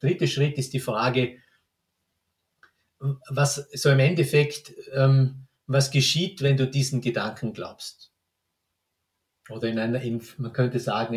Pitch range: 115-140 Hz